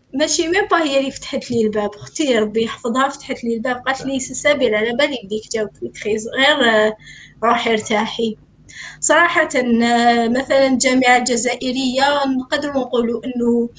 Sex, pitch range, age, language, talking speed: female, 235-310 Hz, 20-39, Arabic, 145 wpm